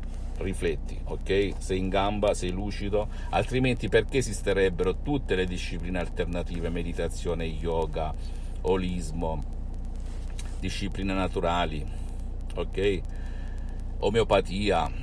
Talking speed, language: 85 wpm, Italian